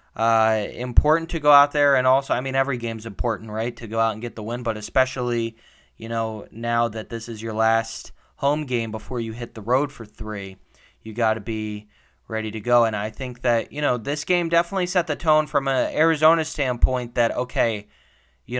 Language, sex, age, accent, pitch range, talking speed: English, male, 20-39, American, 110-130 Hz, 210 wpm